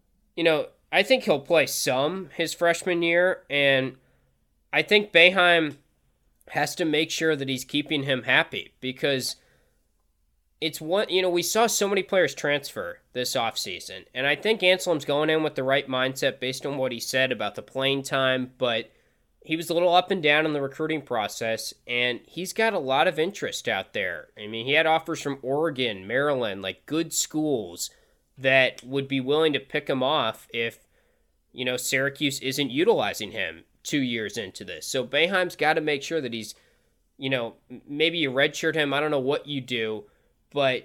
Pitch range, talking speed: 125-155 Hz, 190 wpm